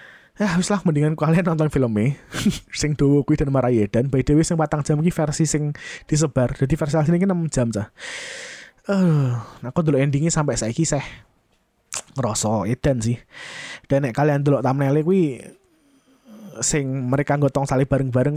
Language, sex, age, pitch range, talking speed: Indonesian, male, 20-39, 125-155 Hz, 175 wpm